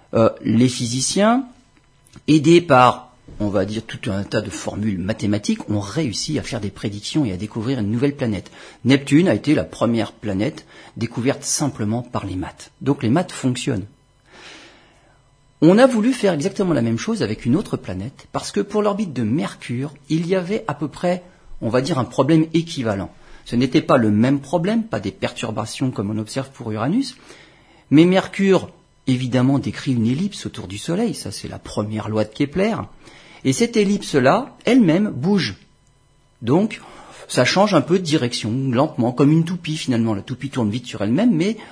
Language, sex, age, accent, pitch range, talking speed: French, male, 40-59, French, 115-160 Hz, 180 wpm